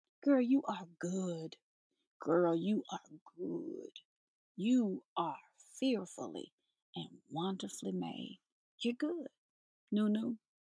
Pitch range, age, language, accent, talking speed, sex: 180-265 Hz, 40-59, English, American, 100 wpm, female